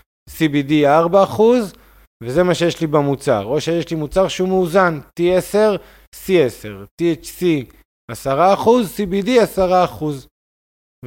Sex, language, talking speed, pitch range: male, Hebrew, 105 wpm, 125-165 Hz